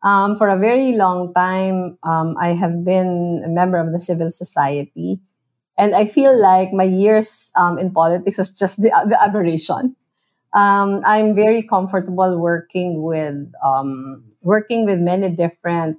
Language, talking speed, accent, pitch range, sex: English, 150 wpm, Filipino, 165-200 Hz, female